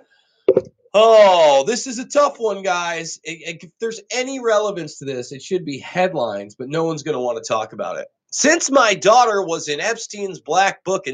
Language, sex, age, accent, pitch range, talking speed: English, male, 30-49, American, 130-210 Hz, 195 wpm